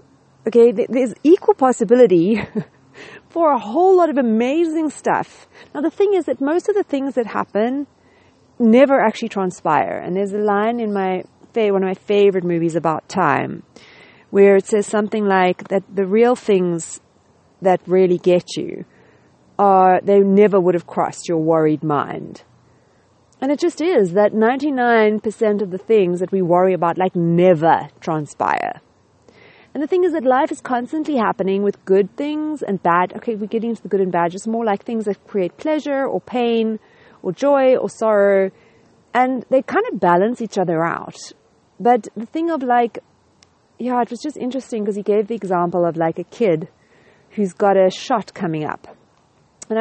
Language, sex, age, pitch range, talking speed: English, female, 40-59, 185-245 Hz, 175 wpm